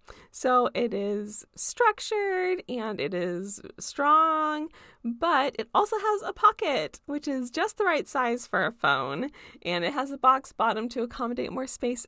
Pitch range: 240-330 Hz